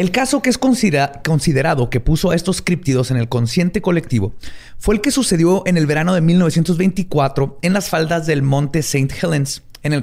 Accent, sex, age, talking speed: Mexican, male, 30-49, 195 wpm